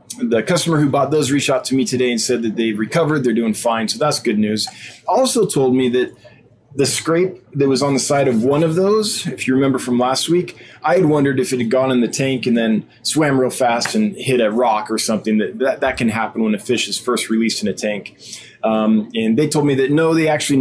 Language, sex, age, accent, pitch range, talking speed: English, male, 20-39, American, 115-150 Hz, 255 wpm